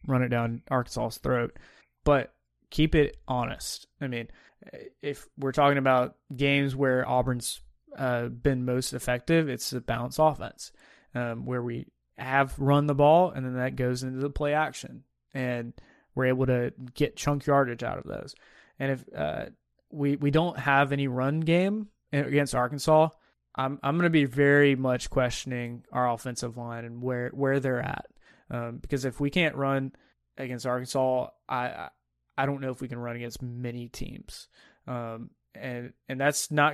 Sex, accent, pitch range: male, American, 120-140 Hz